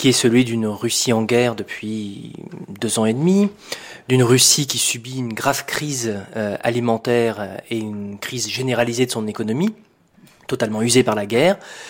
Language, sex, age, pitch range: French, male, 20-39, 110-145 Hz